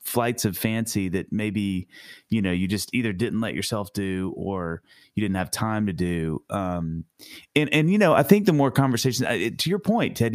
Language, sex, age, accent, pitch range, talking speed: English, male, 30-49, American, 90-115 Hz, 205 wpm